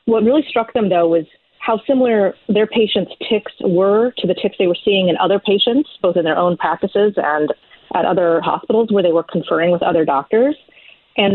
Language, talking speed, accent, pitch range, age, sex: English, 200 wpm, American, 180-225 Hz, 30-49, female